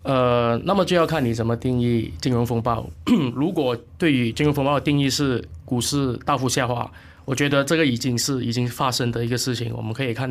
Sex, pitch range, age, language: male, 110-135 Hz, 20-39, Chinese